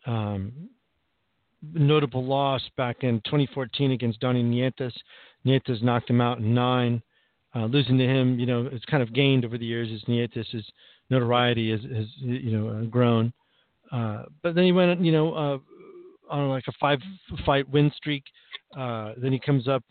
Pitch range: 120-145 Hz